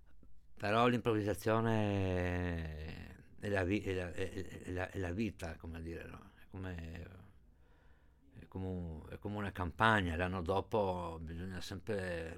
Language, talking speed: Italian, 115 wpm